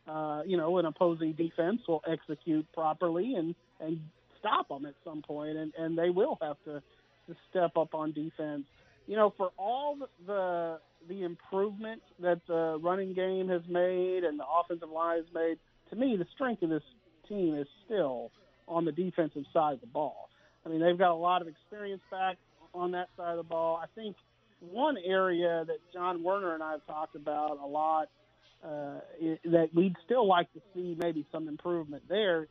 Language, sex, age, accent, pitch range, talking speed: English, male, 40-59, American, 155-190 Hz, 190 wpm